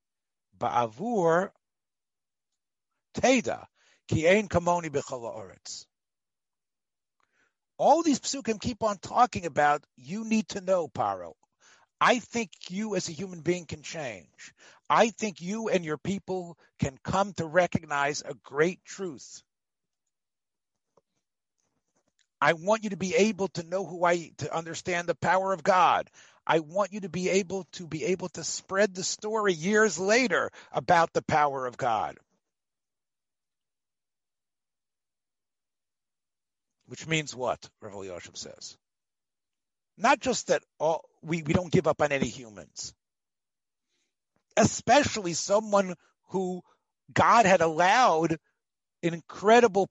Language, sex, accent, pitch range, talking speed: English, male, American, 160-205 Hz, 120 wpm